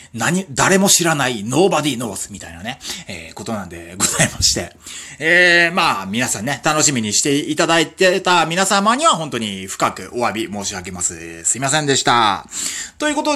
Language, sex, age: Japanese, male, 30-49